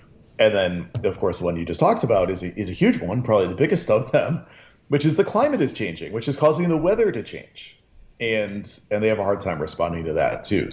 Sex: male